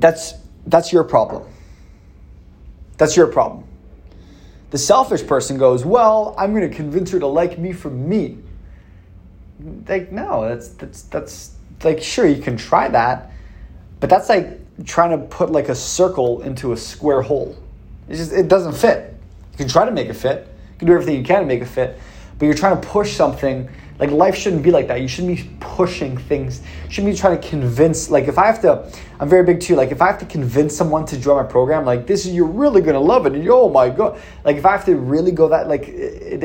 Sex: male